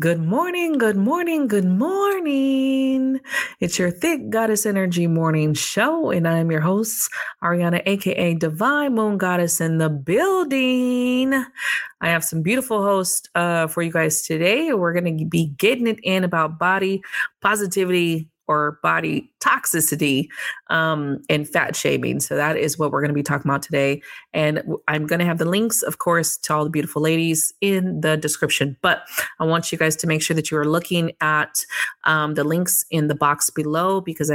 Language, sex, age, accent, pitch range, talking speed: English, female, 20-39, American, 155-190 Hz, 175 wpm